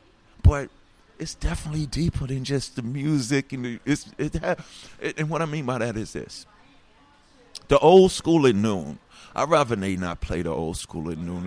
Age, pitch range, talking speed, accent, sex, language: 50-69, 110-170 Hz, 185 wpm, American, male, English